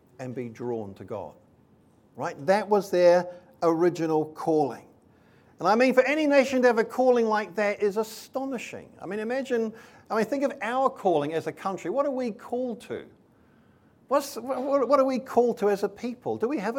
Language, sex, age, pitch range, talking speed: English, male, 50-69, 155-235 Hz, 195 wpm